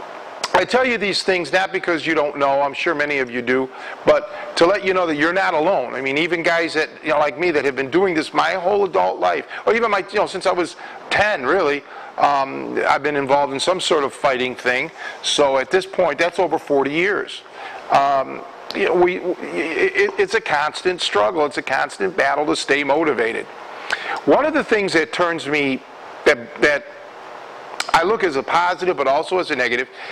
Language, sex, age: English, male, 50-69